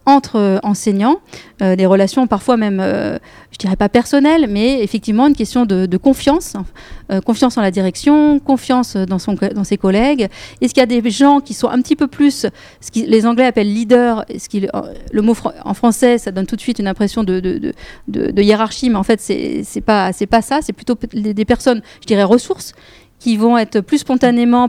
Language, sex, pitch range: French, female, 205-250 Hz